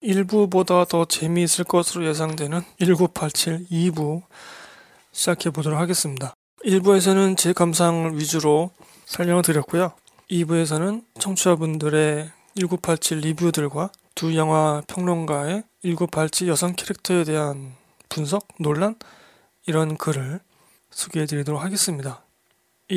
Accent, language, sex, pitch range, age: native, Korean, male, 155-190 Hz, 20-39